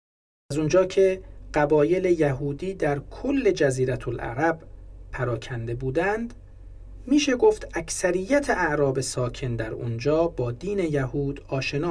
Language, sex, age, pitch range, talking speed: Persian, male, 40-59, 110-165 Hz, 110 wpm